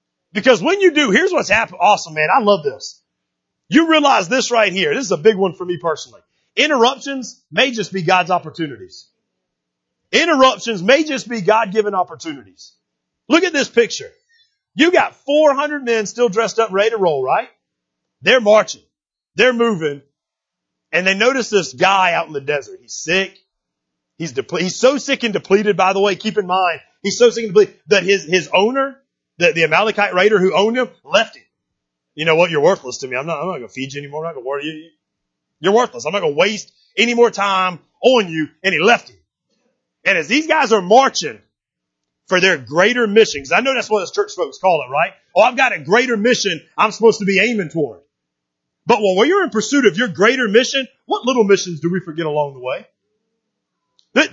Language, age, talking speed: English, 40-59, 210 wpm